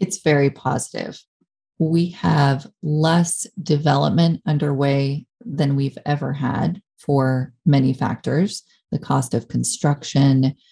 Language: English